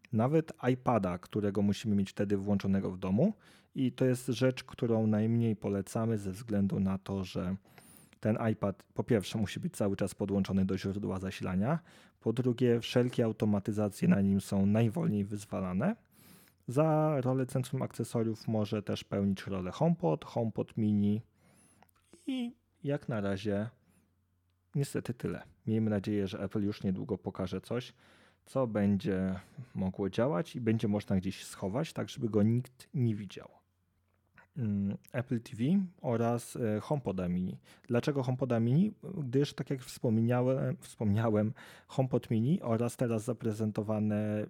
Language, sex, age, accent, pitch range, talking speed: Polish, male, 30-49, native, 100-125 Hz, 135 wpm